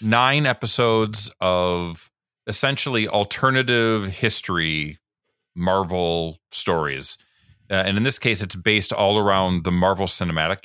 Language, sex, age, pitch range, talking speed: English, male, 30-49, 85-115 Hz, 115 wpm